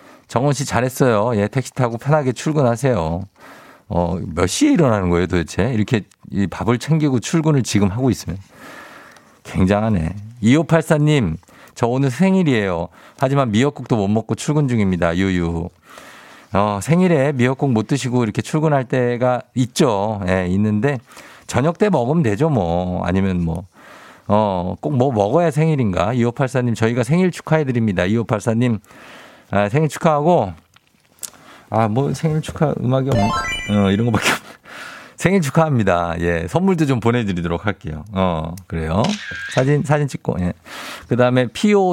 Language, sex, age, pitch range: Korean, male, 50-69, 100-145 Hz